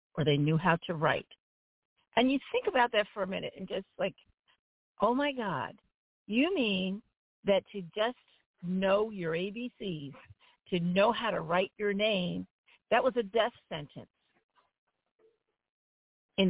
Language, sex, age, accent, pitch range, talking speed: English, female, 50-69, American, 175-230 Hz, 150 wpm